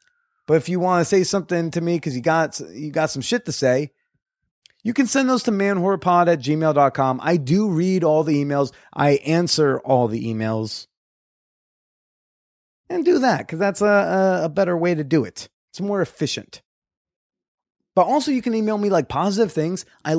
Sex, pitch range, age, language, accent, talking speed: male, 140-200 Hz, 30-49, English, American, 185 wpm